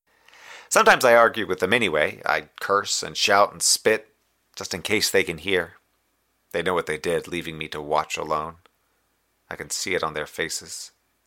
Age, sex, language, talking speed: 30-49, male, English, 185 wpm